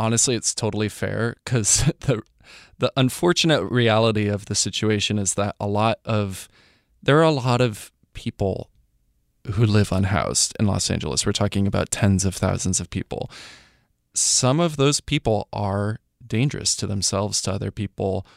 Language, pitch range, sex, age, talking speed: English, 100-115 Hz, male, 20-39, 155 wpm